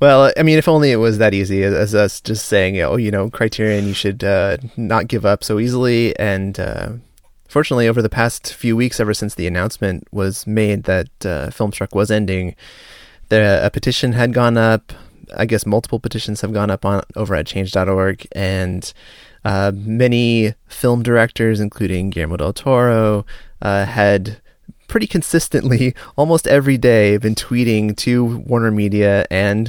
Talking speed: 170 wpm